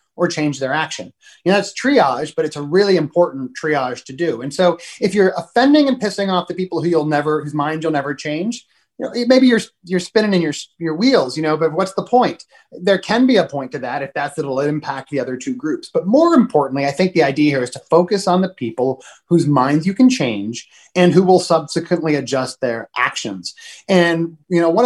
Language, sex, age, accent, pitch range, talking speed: English, male, 30-49, American, 150-210 Hz, 230 wpm